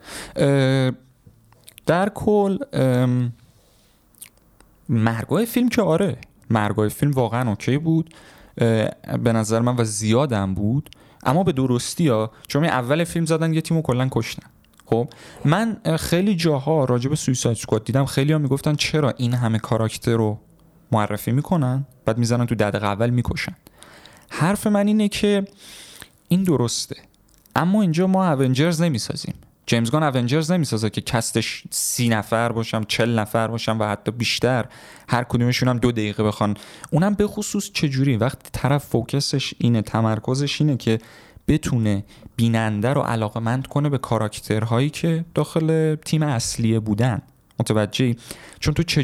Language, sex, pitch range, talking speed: Persian, male, 115-150 Hz, 140 wpm